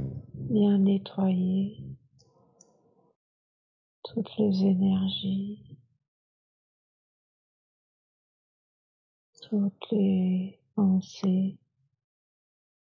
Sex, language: female, French